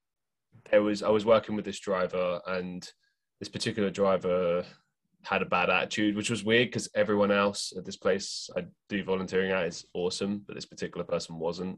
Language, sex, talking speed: English, male, 185 wpm